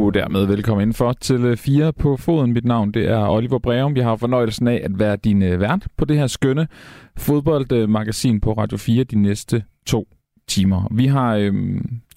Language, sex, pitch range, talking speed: Danish, male, 105-135 Hz, 180 wpm